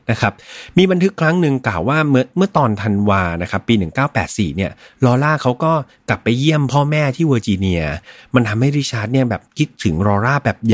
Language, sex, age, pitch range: Thai, male, 30-49, 100-140 Hz